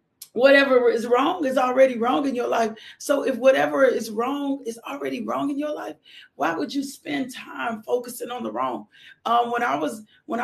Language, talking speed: English, 195 wpm